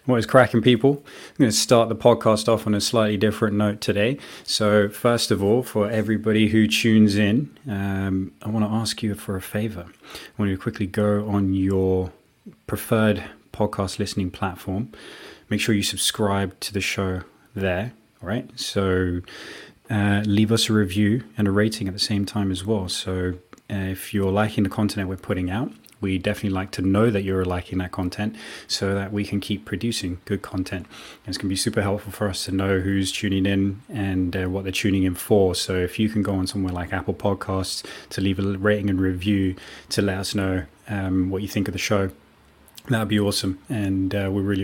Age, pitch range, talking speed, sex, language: 20-39, 95-105 Hz, 205 wpm, male, English